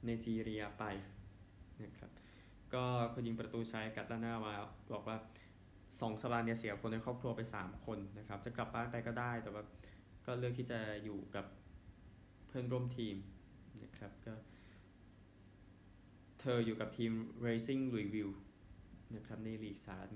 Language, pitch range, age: Thai, 100-120 Hz, 20-39